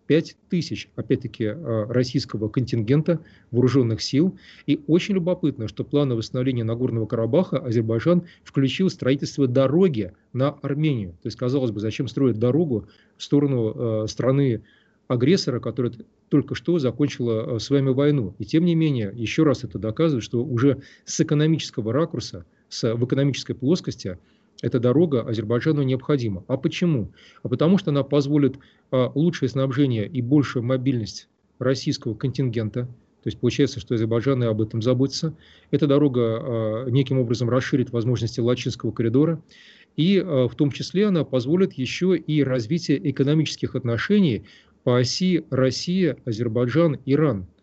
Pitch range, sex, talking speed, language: 115-150 Hz, male, 130 wpm, Russian